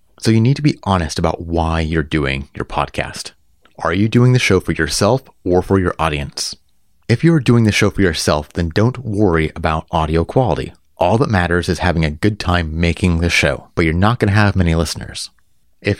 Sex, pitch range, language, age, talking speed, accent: male, 85-105 Hz, English, 30-49, 205 wpm, American